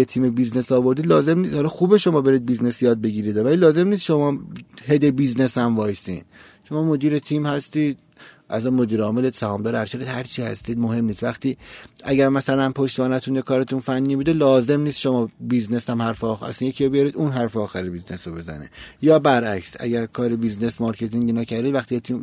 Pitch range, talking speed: 115-140 Hz, 185 wpm